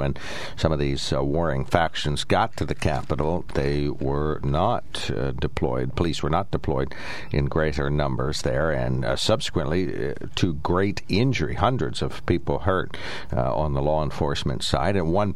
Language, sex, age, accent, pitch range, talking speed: English, male, 60-79, American, 75-100 Hz, 170 wpm